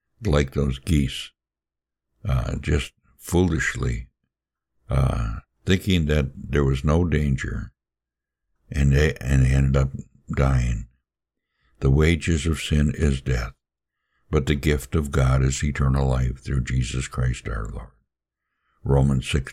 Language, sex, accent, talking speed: English, male, American, 125 wpm